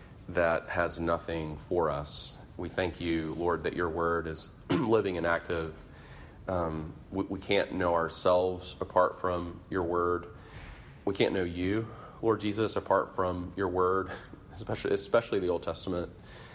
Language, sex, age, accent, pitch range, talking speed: English, male, 30-49, American, 85-105 Hz, 150 wpm